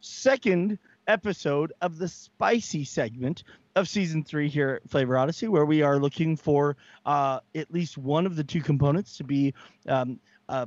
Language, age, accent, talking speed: English, 30-49, American, 170 wpm